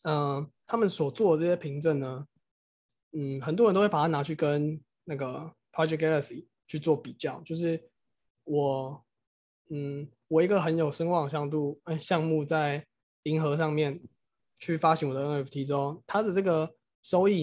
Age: 20-39